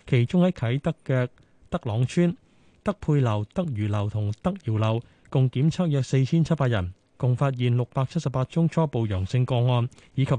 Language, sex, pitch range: Chinese, male, 115-150 Hz